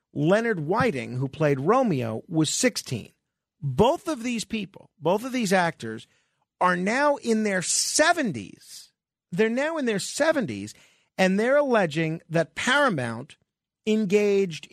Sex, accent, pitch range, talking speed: male, American, 140-210 Hz, 125 wpm